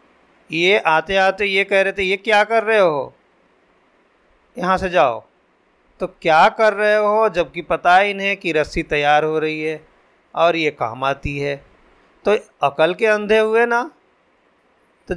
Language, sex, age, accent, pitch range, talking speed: Hindi, male, 40-59, native, 160-205 Hz, 165 wpm